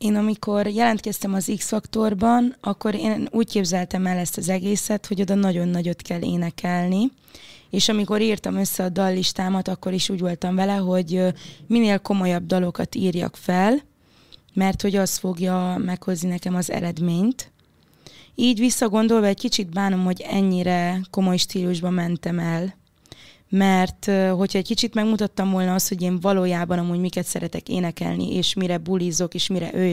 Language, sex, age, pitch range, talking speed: Hungarian, female, 20-39, 180-205 Hz, 150 wpm